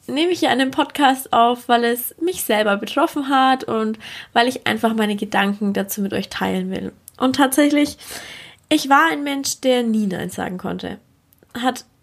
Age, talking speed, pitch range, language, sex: 20-39, 175 wpm, 210-265 Hz, German, female